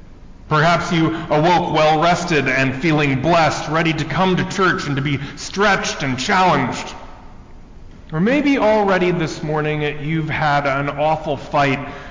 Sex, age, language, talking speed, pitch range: male, 30-49, English, 140 wpm, 115-155 Hz